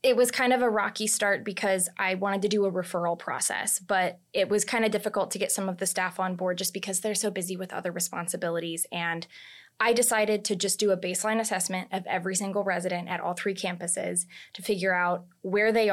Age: 20-39